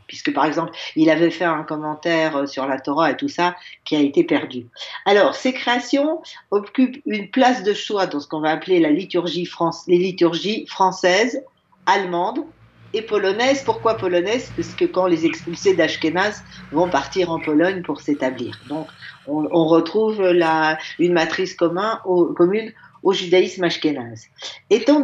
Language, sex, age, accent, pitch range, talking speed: French, female, 50-69, French, 160-240 Hz, 165 wpm